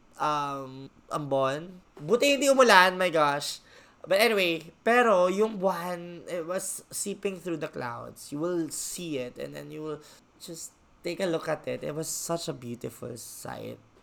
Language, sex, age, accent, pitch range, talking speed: English, male, 20-39, Filipino, 125-175 Hz, 165 wpm